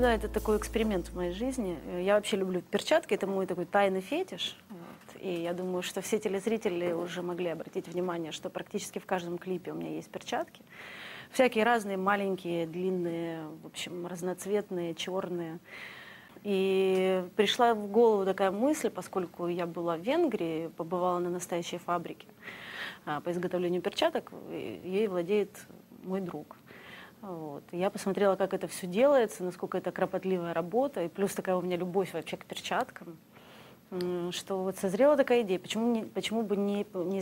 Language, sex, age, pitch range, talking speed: Russian, female, 30-49, 175-210 Hz, 155 wpm